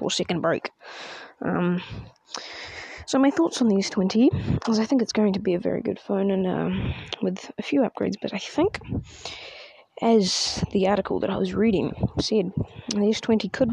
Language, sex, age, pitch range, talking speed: English, female, 20-39, 185-225 Hz, 175 wpm